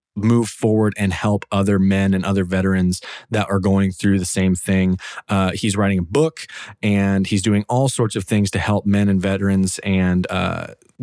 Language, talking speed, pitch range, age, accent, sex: English, 190 wpm, 95-110 Hz, 20-39, American, male